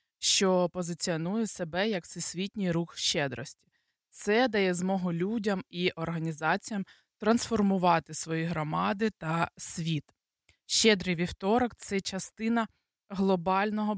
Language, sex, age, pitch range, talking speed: Dutch, female, 20-39, 175-215 Hz, 105 wpm